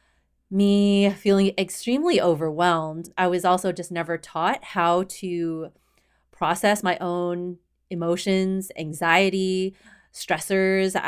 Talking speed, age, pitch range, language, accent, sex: 95 wpm, 30-49, 165-190 Hz, English, American, female